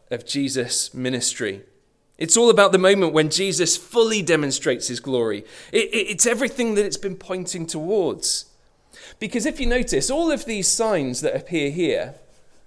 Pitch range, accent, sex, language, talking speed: 115-175 Hz, British, male, English, 150 wpm